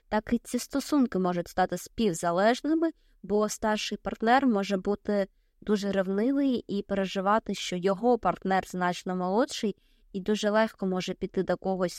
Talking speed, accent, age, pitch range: 140 wpm, native, 20-39, 180-215 Hz